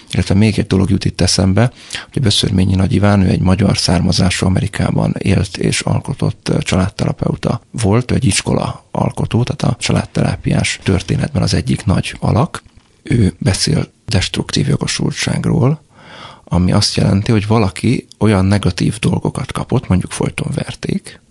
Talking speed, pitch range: 130 wpm, 95-120 Hz